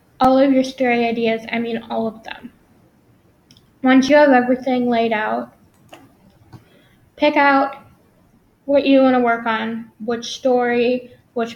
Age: 10-29